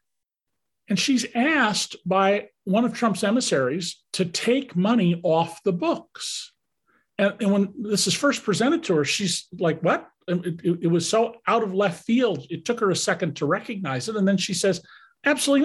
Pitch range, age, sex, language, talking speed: 160-215 Hz, 40-59, male, English, 185 wpm